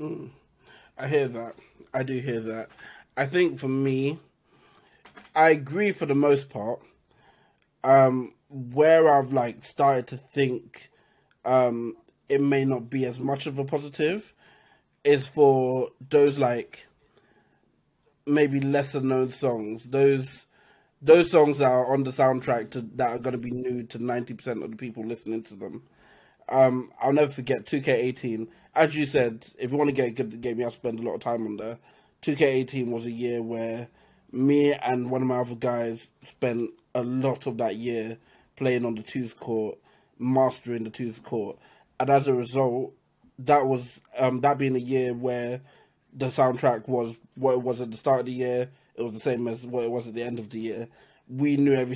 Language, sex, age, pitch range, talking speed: English, male, 20-39, 120-140 Hz, 185 wpm